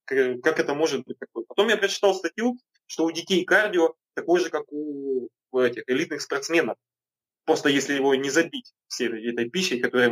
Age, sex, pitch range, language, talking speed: 20-39, male, 130-185 Hz, Ukrainian, 170 wpm